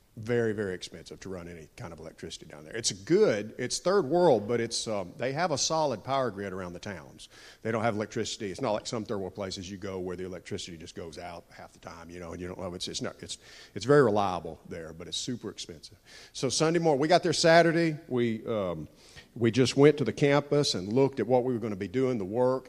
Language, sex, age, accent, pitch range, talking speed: English, male, 50-69, American, 100-130 Hz, 250 wpm